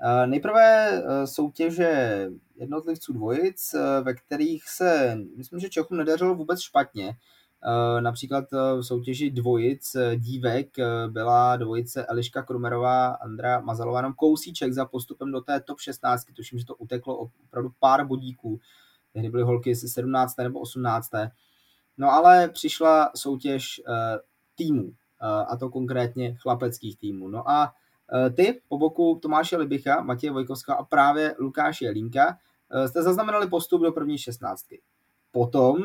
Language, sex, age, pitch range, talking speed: Czech, male, 20-39, 125-160 Hz, 125 wpm